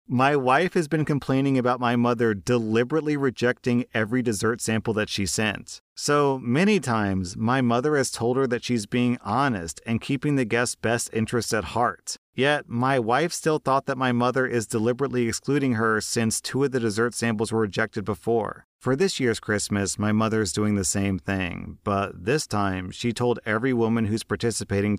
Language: English